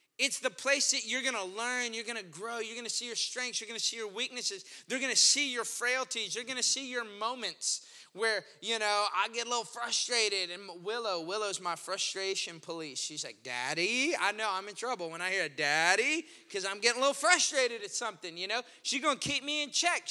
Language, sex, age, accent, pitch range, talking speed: English, male, 20-39, American, 225-295 Hz, 240 wpm